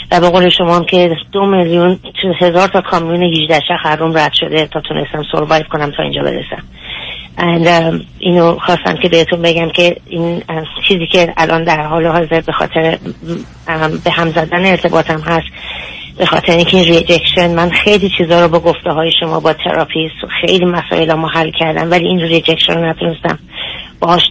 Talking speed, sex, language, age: 170 wpm, female, Persian, 30-49